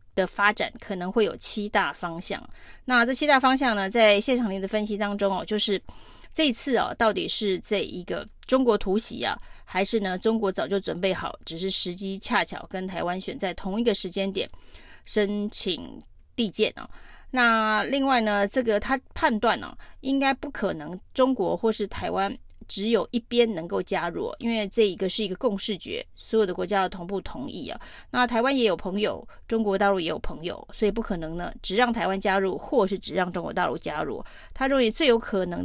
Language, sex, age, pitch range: Chinese, female, 20-39, 190-235 Hz